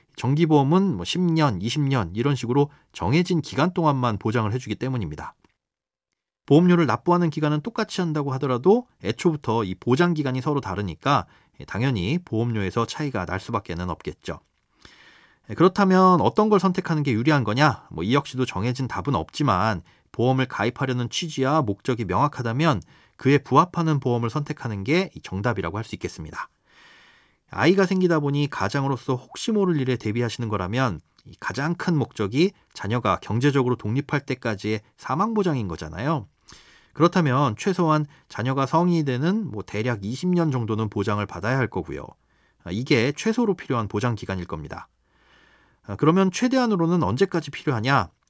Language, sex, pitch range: Korean, male, 110-160 Hz